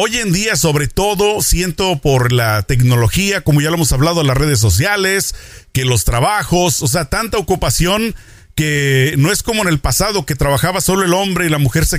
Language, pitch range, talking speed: Spanish, 135-185 Hz, 200 wpm